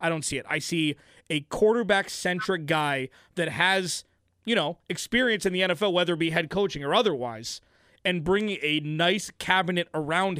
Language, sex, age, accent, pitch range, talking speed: English, male, 20-39, American, 155-185 Hz, 175 wpm